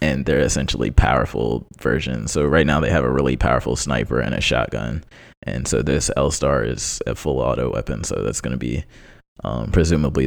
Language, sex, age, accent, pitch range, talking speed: English, male, 20-39, American, 65-80 Hz, 185 wpm